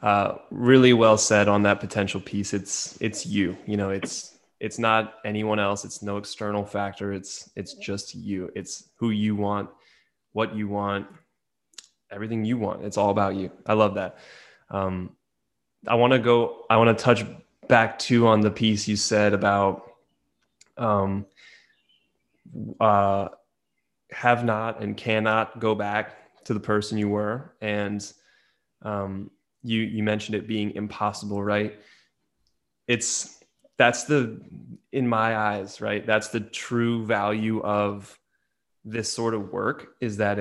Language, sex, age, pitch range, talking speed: English, male, 20-39, 100-115 Hz, 150 wpm